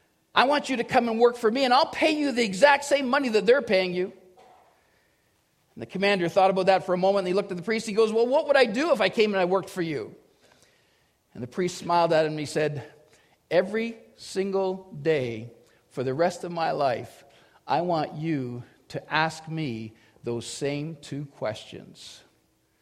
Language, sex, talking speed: English, male, 210 wpm